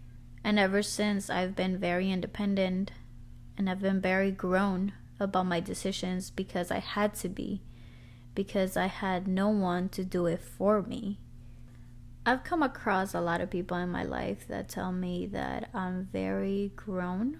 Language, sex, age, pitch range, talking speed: English, female, 20-39, 120-200 Hz, 160 wpm